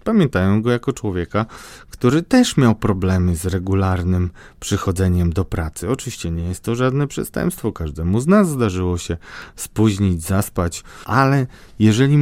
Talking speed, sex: 140 wpm, male